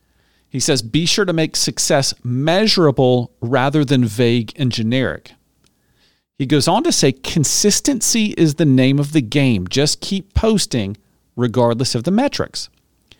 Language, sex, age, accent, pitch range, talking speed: English, male, 40-59, American, 115-165 Hz, 145 wpm